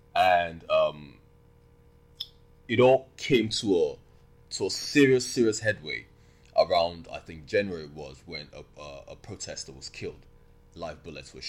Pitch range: 70-100 Hz